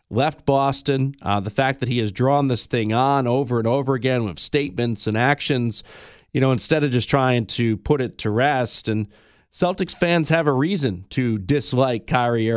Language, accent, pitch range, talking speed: English, American, 115-140 Hz, 190 wpm